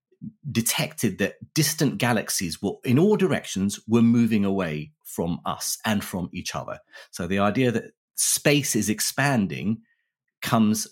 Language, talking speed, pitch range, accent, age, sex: English, 135 wpm, 100-125 Hz, British, 30-49, male